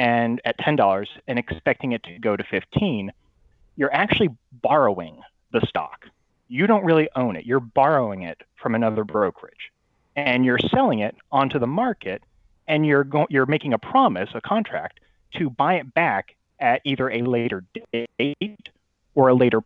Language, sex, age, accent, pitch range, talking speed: English, male, 30-49, American, 115-150 Hz, 160 wpm